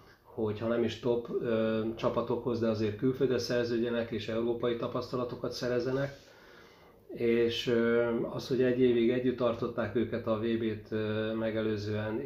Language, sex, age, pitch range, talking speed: Hungarian, male, 30-49, 115-125 Hz, 130 wpm